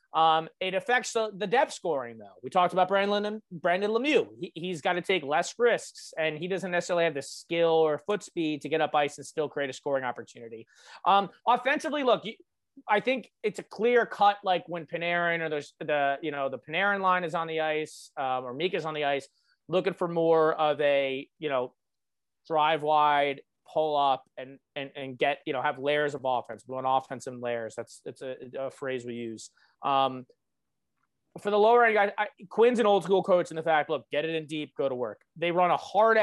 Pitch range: 145-195 Hz